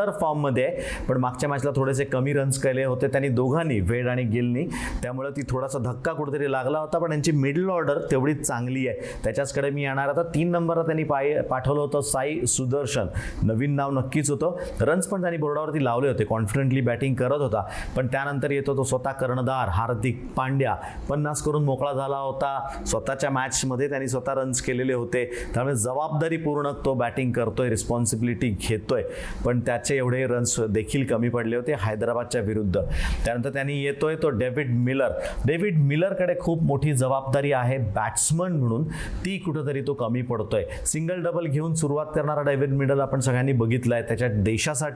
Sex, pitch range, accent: male, 125-155 Hz, native